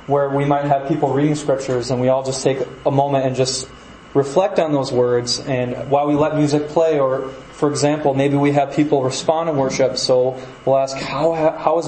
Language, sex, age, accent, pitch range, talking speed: English, male, 20-39, American, 130-150 Hz, 205 wpm